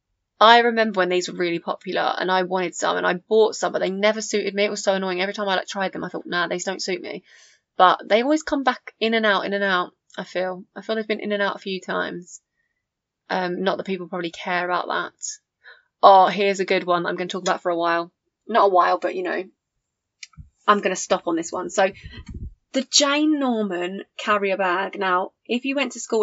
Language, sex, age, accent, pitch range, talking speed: English, female, 20-39, British, 185-215 Hz, 240 wpm